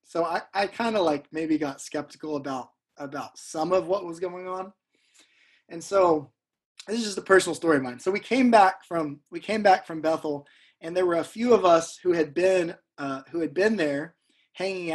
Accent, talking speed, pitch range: American, 215 wpm, 155-200 Hz